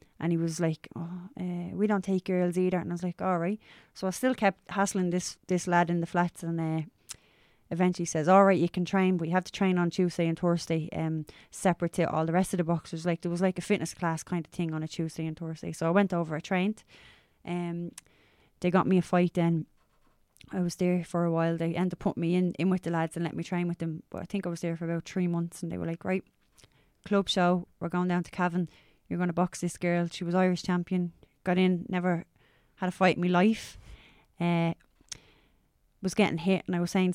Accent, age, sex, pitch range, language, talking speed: Irish, 20-39, female, 170-185 Hz, English, 250 wpm